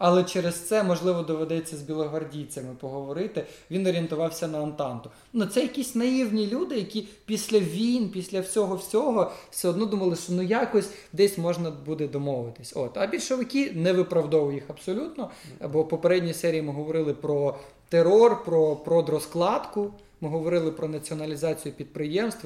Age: 20-39